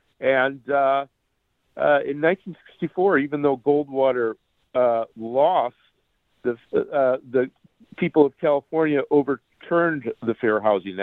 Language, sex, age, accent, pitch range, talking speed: English, male, 50-69, American, 105-145 Hz, 110 wpm